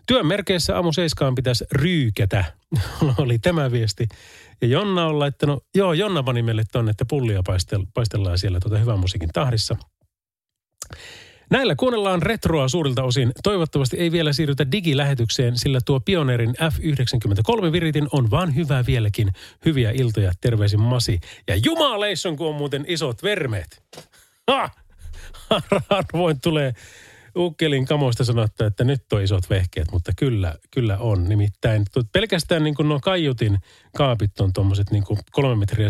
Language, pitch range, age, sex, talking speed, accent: Finnish, 105-150 Hz, 30-49, male, 130 wpm, native